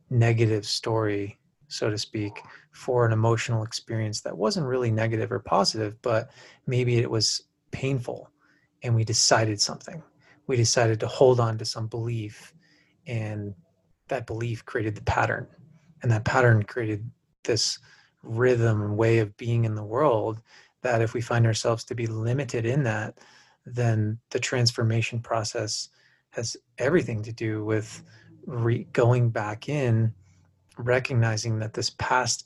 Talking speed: 140 wpm